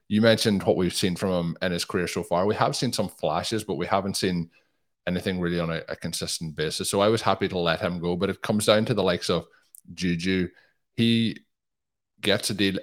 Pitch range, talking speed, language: 85-100 Hz, 230 wpm, English